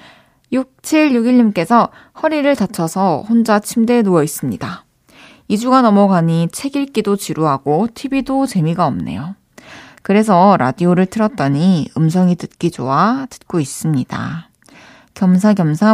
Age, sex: 20-39, female